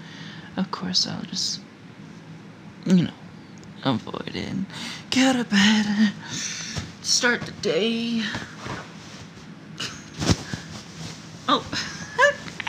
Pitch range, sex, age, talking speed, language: 170-200 Hz, male, 20-39, 70 wpm, English